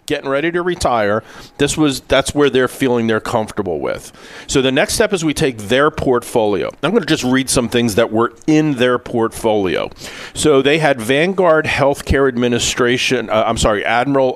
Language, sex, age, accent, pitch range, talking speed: English, male, 40-59, American, 115-135 Hz, 185 wpm